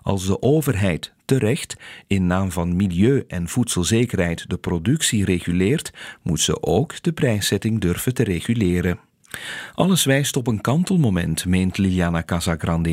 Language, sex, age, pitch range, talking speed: Dutch, male, 40-59, 90-130 Hz, 135 wpm